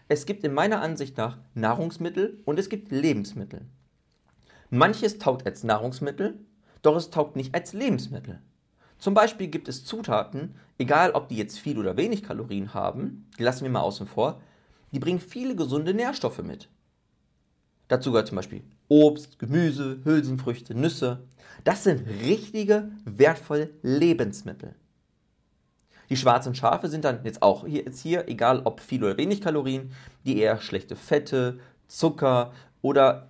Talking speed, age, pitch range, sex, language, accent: 145 wpm, 40-59, 110-155 Hz, male, German, German